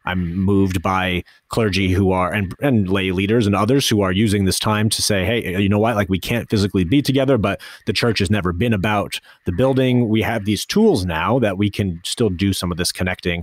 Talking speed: 230 wpm